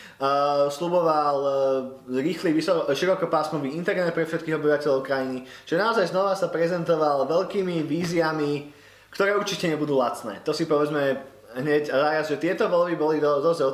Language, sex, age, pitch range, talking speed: Slovak, male, 20-39, 145-175 Hz, 150 wpm